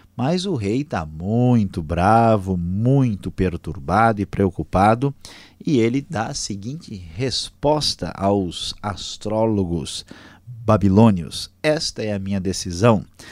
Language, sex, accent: Portuguese, male, Brazilian